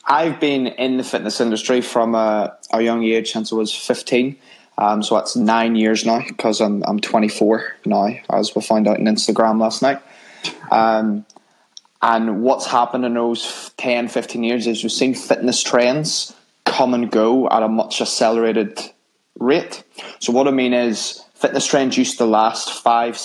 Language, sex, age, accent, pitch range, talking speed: English, male, 20-39, British, 110-120 Hz, 175 wpm